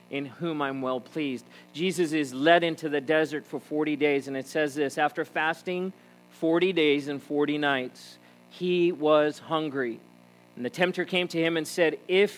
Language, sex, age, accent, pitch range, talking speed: English, male, 40-59, American, 120-155 Hz, 180 wpm